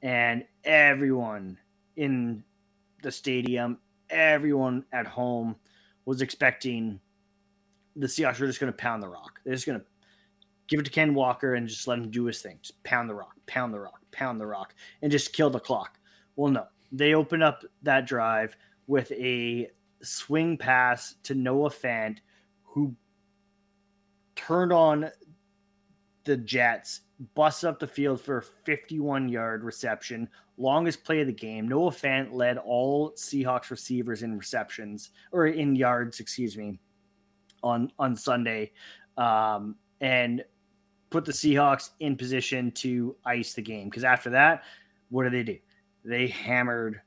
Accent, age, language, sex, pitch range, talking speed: American, 20-39, English, male, 115-150 Hz, 155 wpm